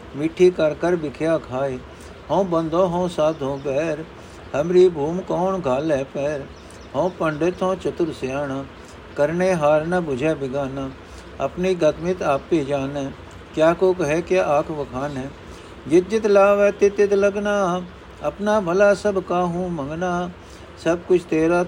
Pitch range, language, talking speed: 125-170 Hz, Punjabi, 135 wpm